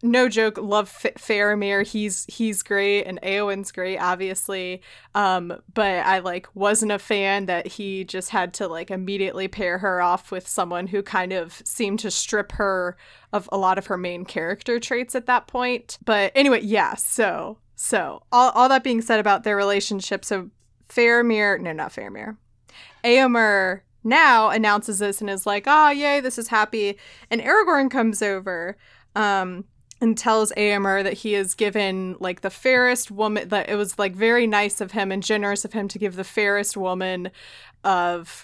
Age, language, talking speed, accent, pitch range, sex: 20-39, English, 180 wpm, American, 190-225 Hz, female